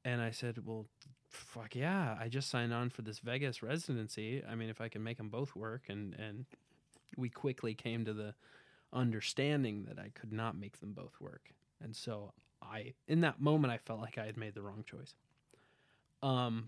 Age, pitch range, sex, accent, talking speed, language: 20-39, 110-135 Hz, male, American, 200 wpm, English